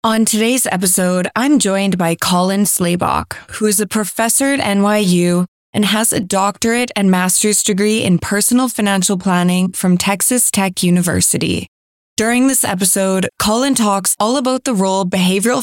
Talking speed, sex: 150 wpm, female